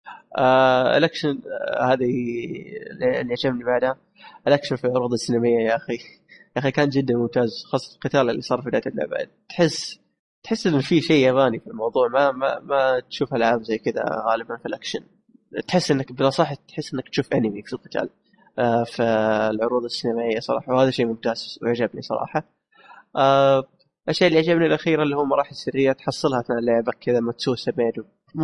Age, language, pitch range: 20-39, Arabic, 120-150 Hz